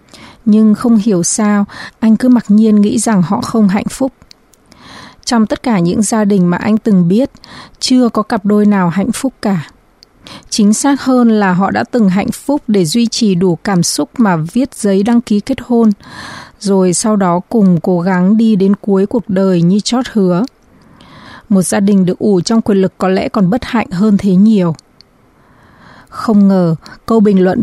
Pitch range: 190-230 Hz